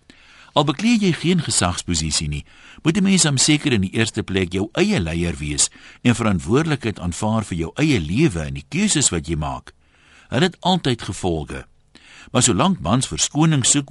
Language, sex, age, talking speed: Dutch, male, 60-79, 175 wpm